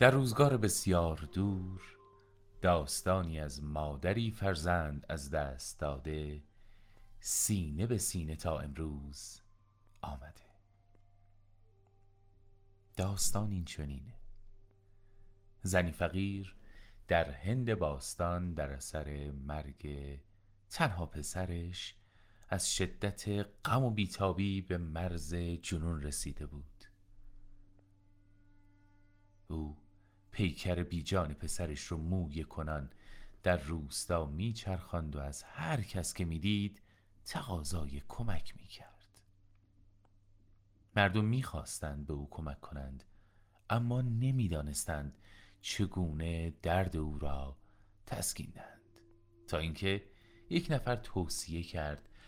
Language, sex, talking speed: Persian, male, 90 wpm